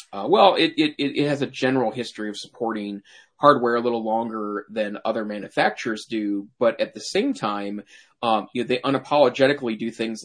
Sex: male